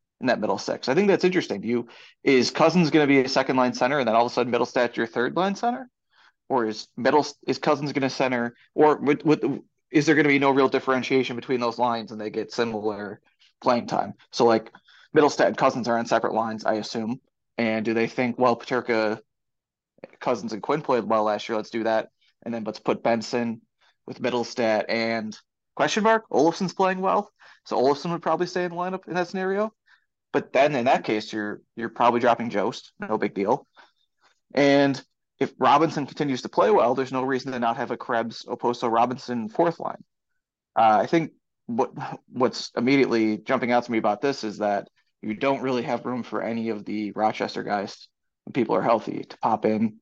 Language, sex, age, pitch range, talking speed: English, male, 20-39, 115-145 Hz, 205 wpm